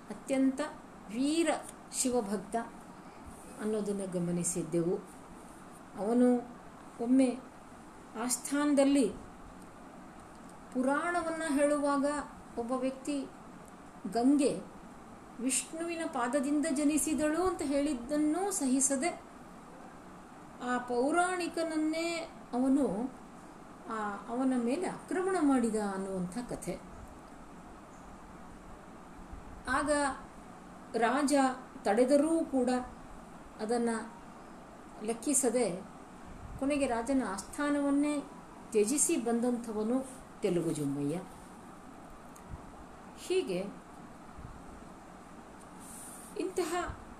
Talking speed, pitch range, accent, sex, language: 55 wpm, 230-295 Hz, native, female, Kannada